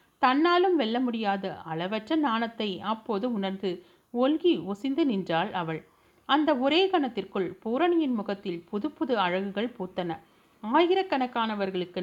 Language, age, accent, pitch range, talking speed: Tamil, 40-59, native, 185-255 Hz, 100 wpm